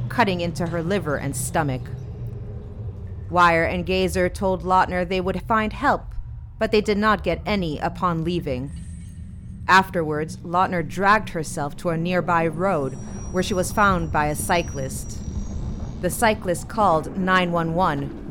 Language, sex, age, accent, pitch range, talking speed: English, female, 30-49, American, 150-200 Hz, 140 wpm